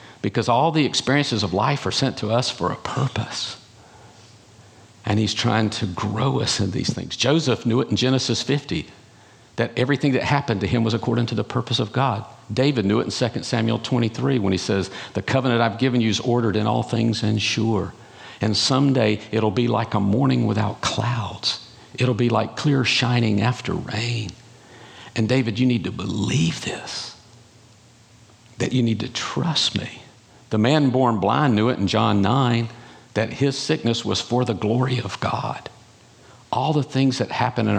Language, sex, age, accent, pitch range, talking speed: English, male, 50-69, American, 110-130 Hz, 185 wpm